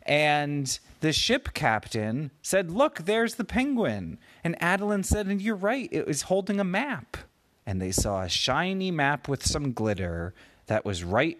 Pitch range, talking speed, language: 110-160 Hz, 170 wpm, English